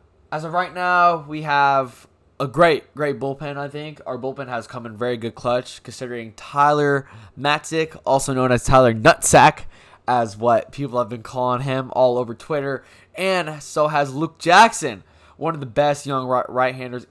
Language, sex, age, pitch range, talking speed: English, male, 10-29, 110-145 Hz, 170 wpm